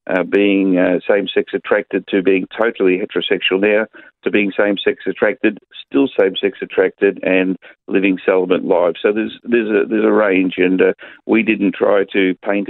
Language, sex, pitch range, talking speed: English, male, 100-120 Hz, 165 wpm